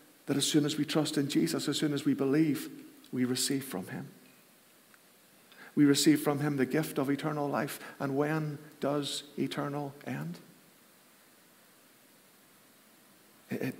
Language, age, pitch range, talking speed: English, 50-69, 140-160 Hz, 140 wpm